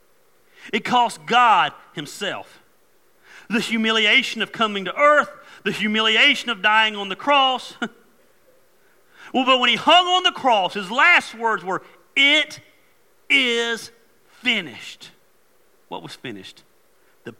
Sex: male